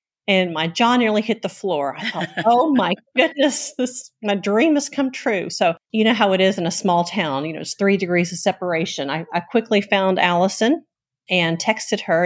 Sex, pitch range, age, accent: female, 170-210 Hz, 40-59, American